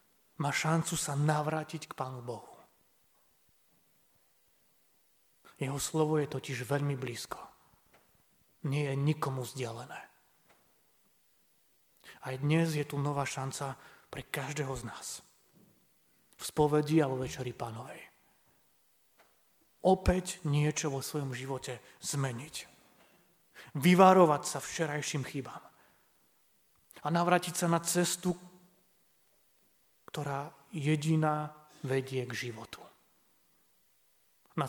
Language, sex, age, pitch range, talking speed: Slovak, male, 30-49, 130-165 Hz, 90 wpm